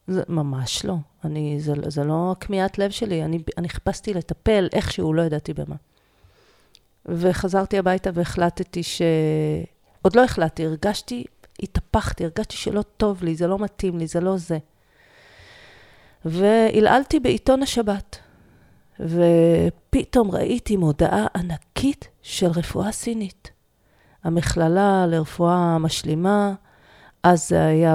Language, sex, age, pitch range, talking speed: Hebrew, female, 40-59, 160-205 Hz, 115 wpm